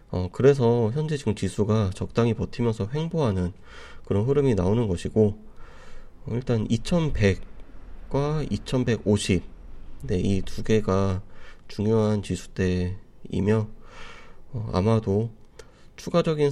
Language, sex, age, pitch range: Korean, male, 30-49, 95-130 Hz